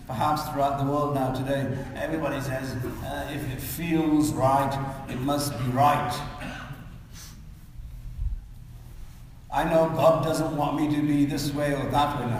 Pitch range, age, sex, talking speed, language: 120-180 Hz, 60-79, male, 150 wpm, English